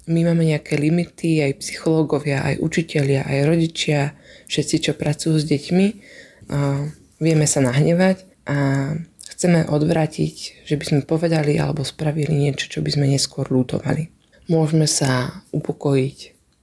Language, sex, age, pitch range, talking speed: Slovak, female, 20-39, 145-160 Hz, 130 wpm